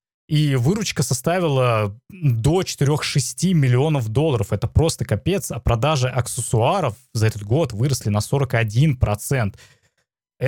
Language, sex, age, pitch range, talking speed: Russian, male, 20-39, 115-150 Hz, 110 wpm